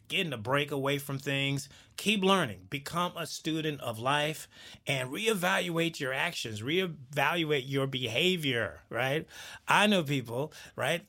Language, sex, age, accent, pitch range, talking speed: English, male, 30-49, American, 115-170 Hz, 135 wpm